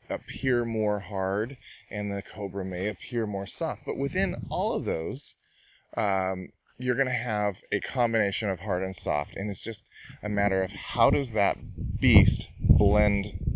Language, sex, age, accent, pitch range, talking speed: English, male, 30-49, American, 90-115 Hz, 160 wpm